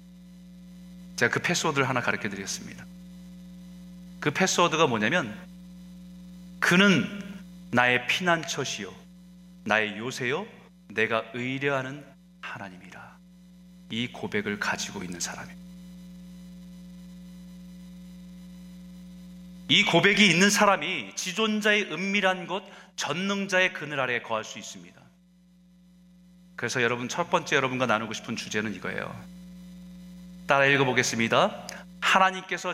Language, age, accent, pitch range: Korean, 30-49, native, 150-180 Hz